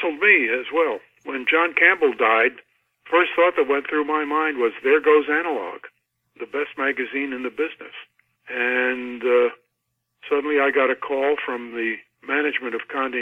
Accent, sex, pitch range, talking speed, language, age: American, male, 125-180 Hz, 165 wpm, English, 50-69